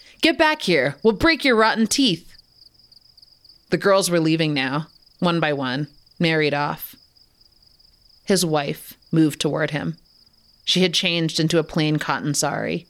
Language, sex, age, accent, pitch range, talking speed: English, female, 30-49, American, 145-180 Hz, 145 wpm